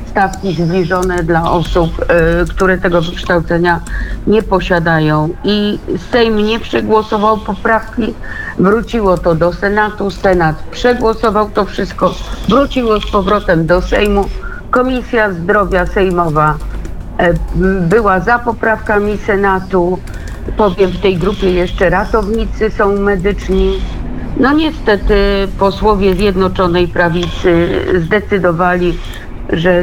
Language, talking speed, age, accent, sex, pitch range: Polish, 100 wpm, 50-69, native, female, 175-210 Hz